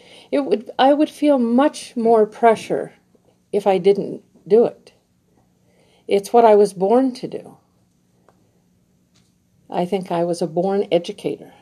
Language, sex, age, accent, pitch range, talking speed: English, female, 50-69, American, 170-225 Hz, 140 wpm